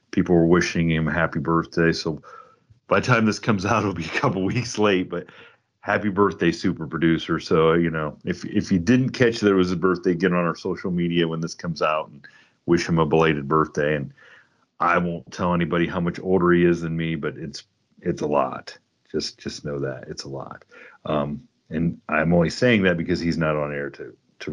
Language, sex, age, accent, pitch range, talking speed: English, male, 40-59, American, 80-95 Hz, 215 wpm